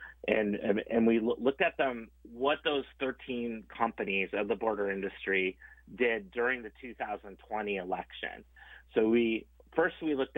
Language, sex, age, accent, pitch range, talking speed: English, male, 30-49, American, 100-125 Hz, 145 wpm